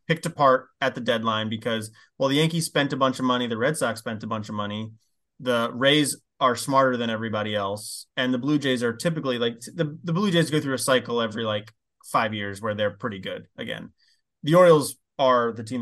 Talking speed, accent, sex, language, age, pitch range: 220 wpm, American, male, English, 20-39, 115-140 Hz